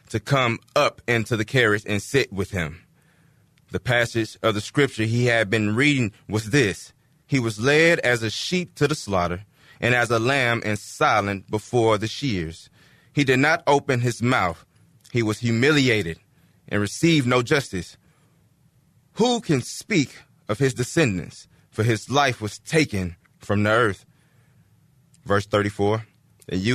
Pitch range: 110-135 Hz